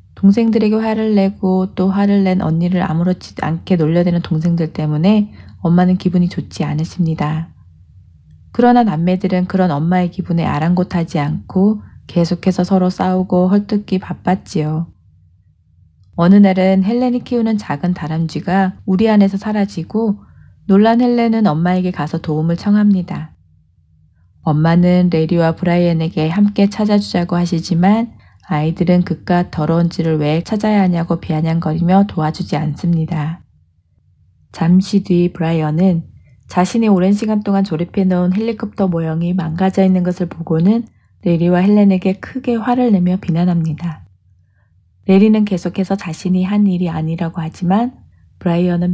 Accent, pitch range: native, 160-195 Hz